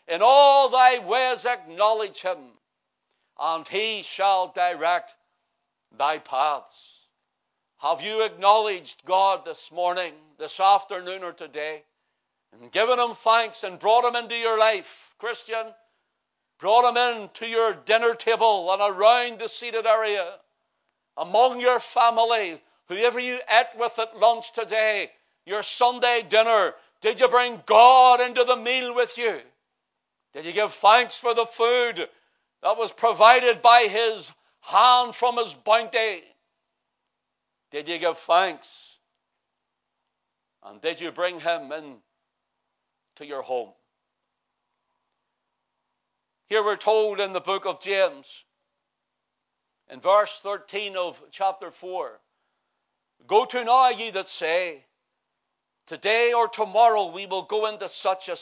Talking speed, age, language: 125 wpm, 60-79, English